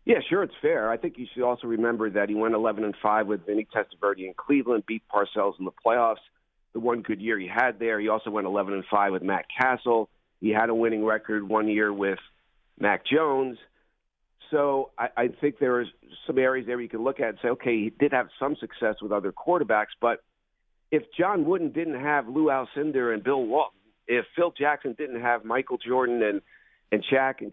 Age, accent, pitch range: 50-69, American, 110-135 Hz